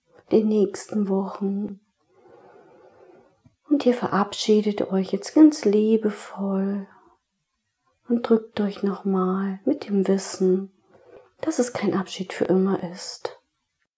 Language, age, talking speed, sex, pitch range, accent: German, 40-59, 105 wpm, female, 190-235 Hz, German